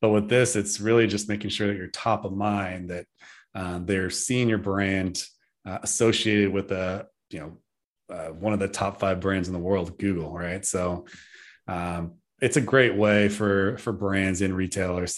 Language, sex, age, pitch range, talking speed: English, male, 30-49, 95-110 Hz, 190 wpm